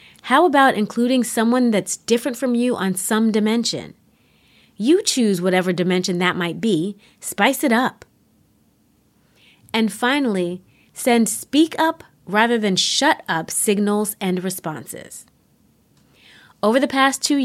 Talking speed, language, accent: 125 wpm, English, American